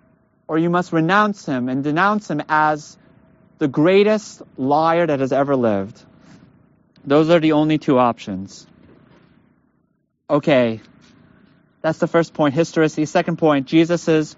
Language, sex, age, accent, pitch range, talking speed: English, male, 30-49, American, 150-220 Hz, 130 wpm